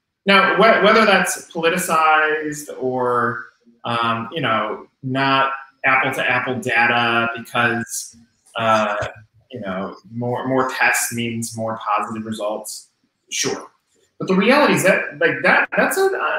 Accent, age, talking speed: American, 30-49, 115 wpm